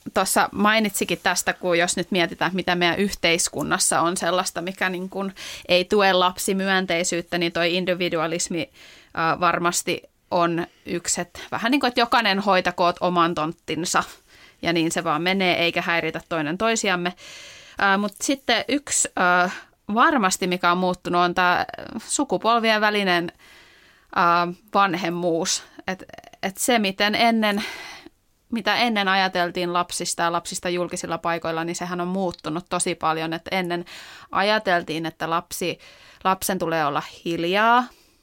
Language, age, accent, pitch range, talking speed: Finnish, 30-49, native, 170-200 Hz, 130 wpm